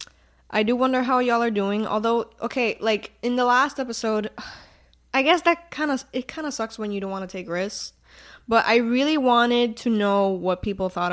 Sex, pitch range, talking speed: female, 175-240 Hz, 210 wpm